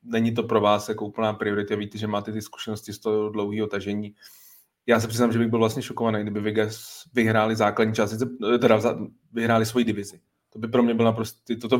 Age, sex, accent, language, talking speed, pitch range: 20-39, male, native, Czech, 210 wpm, 105-120 Hz